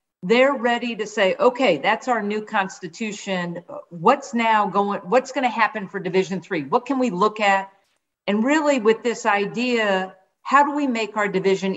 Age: 50-69